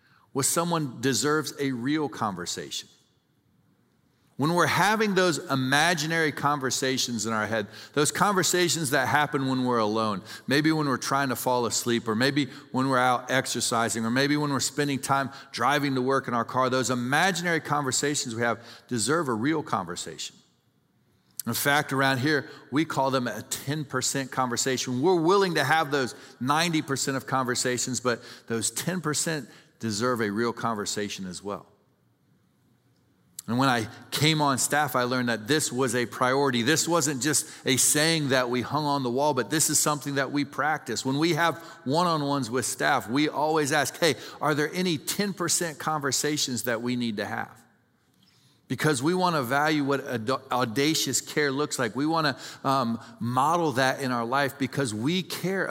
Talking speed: 165 wpm